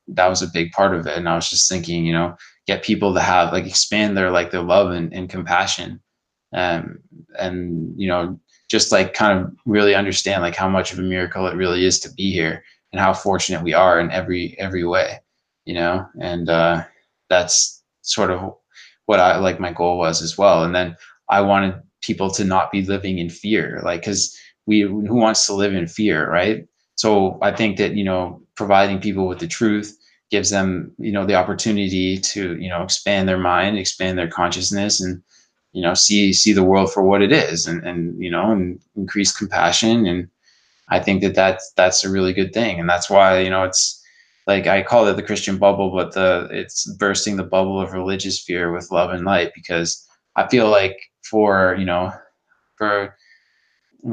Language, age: English, 20-39